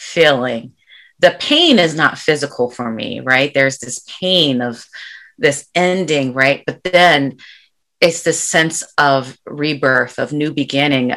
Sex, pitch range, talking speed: female, 135-175 Hz, 140 wpm